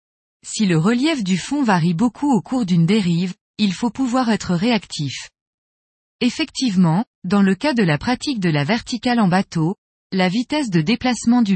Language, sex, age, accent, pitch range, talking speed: French, female, 20-39, French, 180-245 Hz, 170 wpm